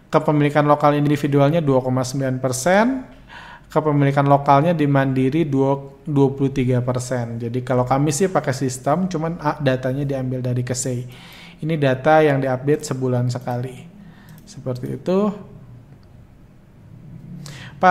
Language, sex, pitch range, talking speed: Indonesian, male, 135-165 Hz, 105 wpm